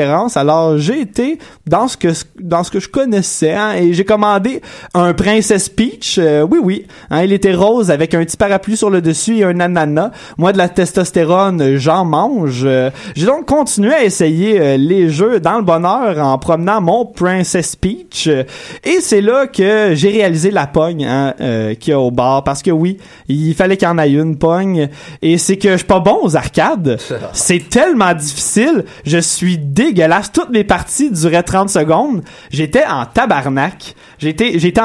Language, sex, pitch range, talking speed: French, male, 160-205 Hz, 190 wpm